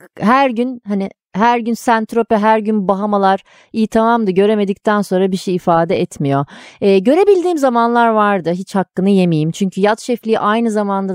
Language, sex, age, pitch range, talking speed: Turkish, female, 30-49, 175-245 Hz, 155 wpm